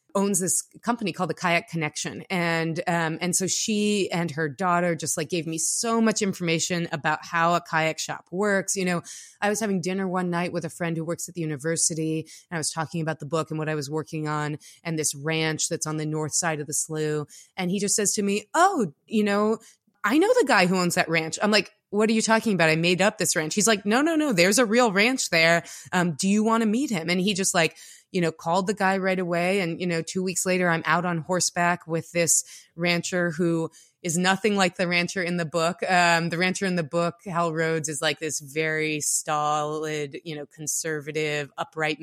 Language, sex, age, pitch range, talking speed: English, female, 20-39, 160-185 Hz, 235 wpm